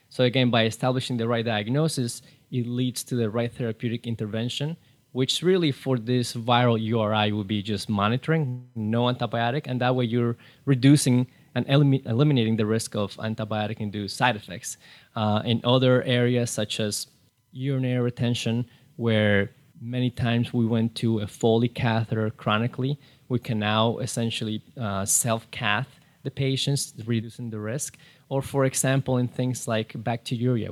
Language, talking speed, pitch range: English, 145 wpm, 110-130 Hz